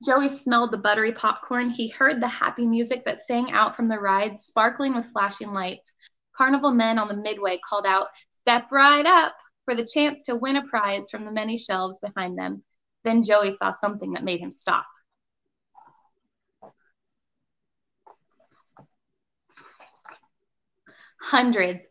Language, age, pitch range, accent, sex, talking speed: English, 20-39, 195-245 Hz, American, female, 140 wpm